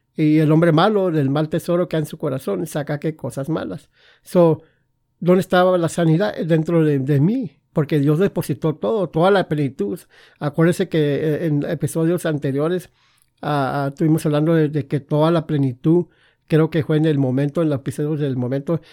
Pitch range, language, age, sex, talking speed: 145-170 Hz, English, 50-69, male, 180 wpm